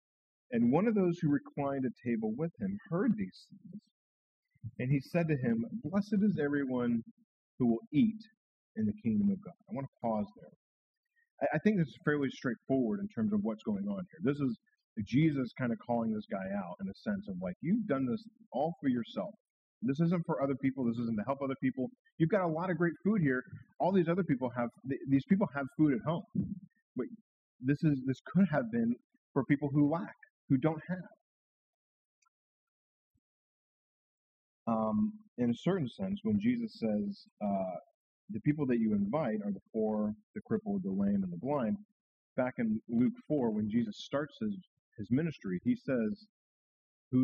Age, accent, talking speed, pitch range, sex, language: 40-59, American, 185 wpm, 130-215 Hz, male, English